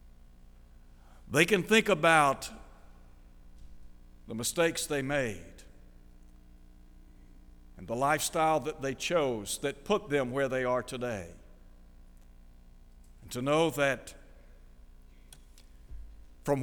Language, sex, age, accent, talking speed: English, male, 60-79, American, 95 wpm